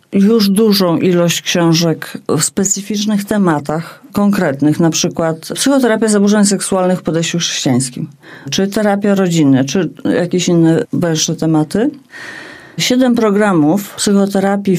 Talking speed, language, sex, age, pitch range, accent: 110 wpm, English, female, 40-59, 170-225 Hz, Polish